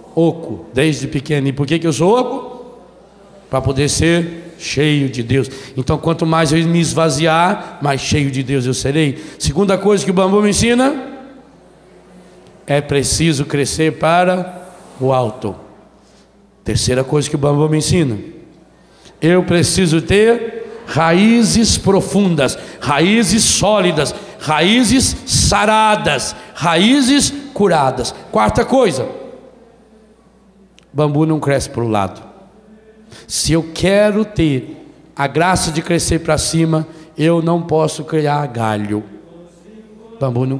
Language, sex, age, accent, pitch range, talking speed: Portuguese, male, 60-79, Brazilian, 135-200 Hz, 125 wpm